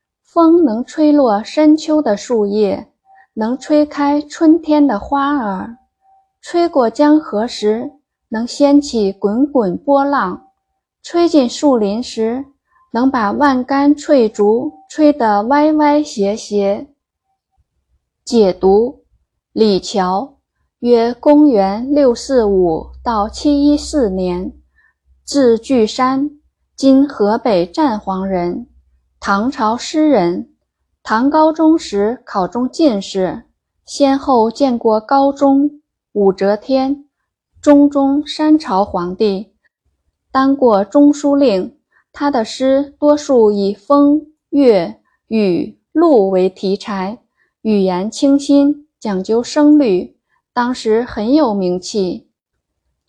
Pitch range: 210-290 Hz